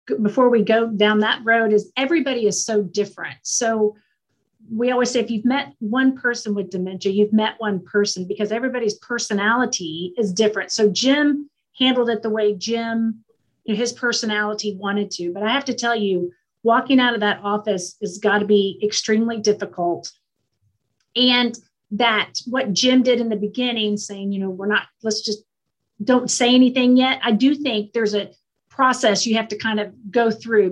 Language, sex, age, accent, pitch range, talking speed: English, female, 40-59, American, 205-240 Hz, 180 wpm